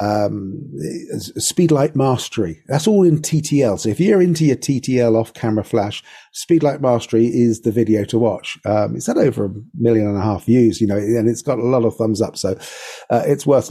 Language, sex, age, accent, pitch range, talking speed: English, male, 40-59, British, 110-130 Hz, 205 wpm